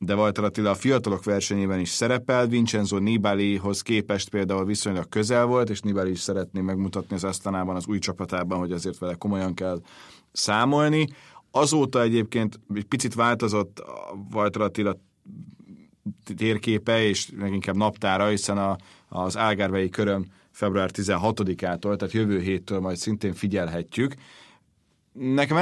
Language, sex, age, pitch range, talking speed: Hungarian, male, 30-49, 100-120 Hz, 130 wpm